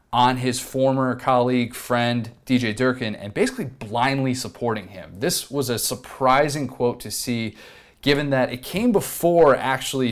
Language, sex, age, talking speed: English, male, 30-49, 150 wpm